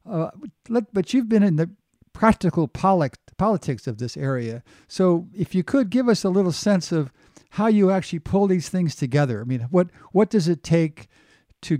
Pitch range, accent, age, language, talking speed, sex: 145-180 Hz, American, 50-69, English, 195 wpm, male